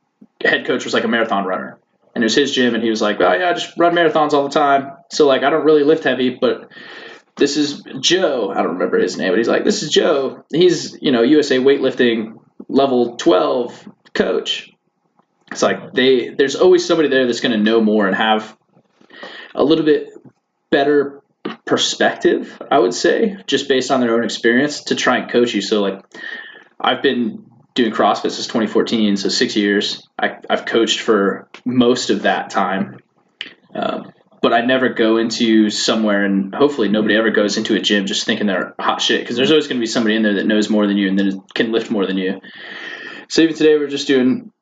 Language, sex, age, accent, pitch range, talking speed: English, male, 20-39, American, 105-145 Hz, 205 wpm